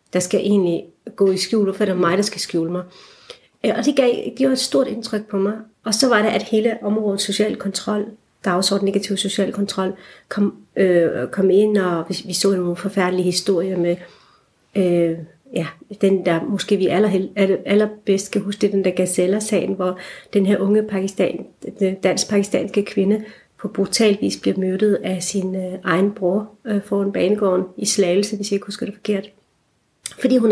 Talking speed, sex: 195 wpm, female